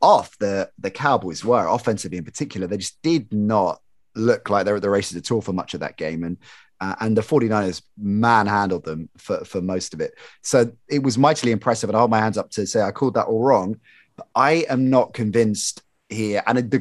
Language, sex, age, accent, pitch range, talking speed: English, male, 30-49, British, 105-125 Hz, 225 wpm